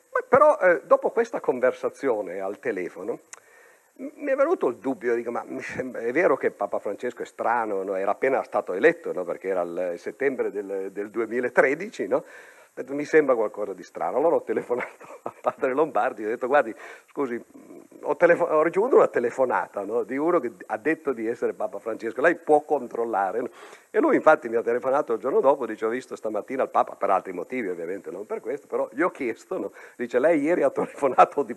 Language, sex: Italian, male